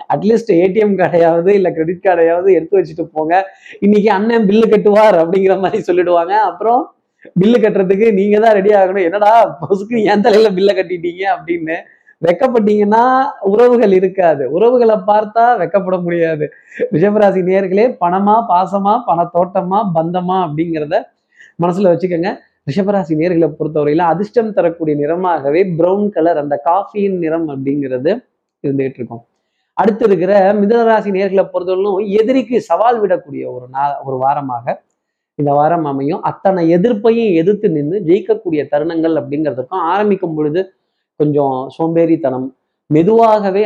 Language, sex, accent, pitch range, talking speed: Tamil, male, native, 160-210 Hz, 120 wpm